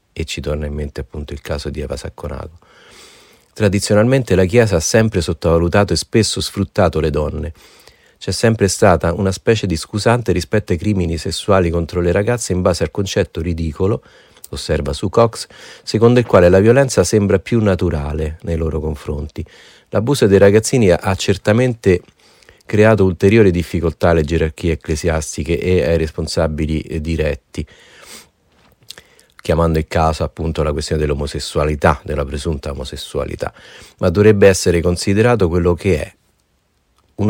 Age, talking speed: 40-59, 140 wpm